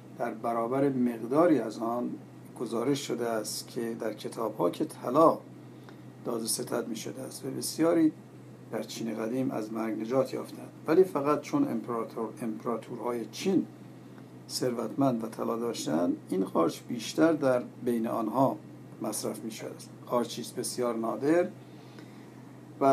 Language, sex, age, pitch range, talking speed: Persian, male, 50-69, 110-135 Hz, 130 wpm